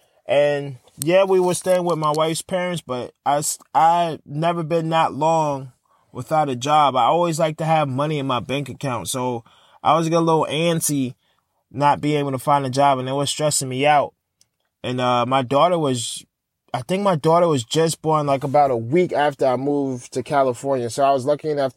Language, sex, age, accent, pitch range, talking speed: English, male, 20-39, American, 135-170 Hz, 205 wpm